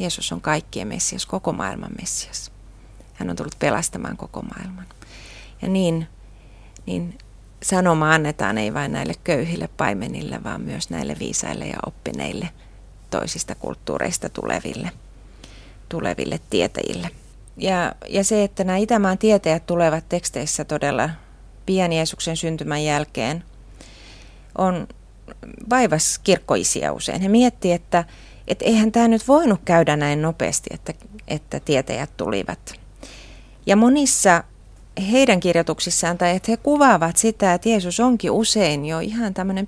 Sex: female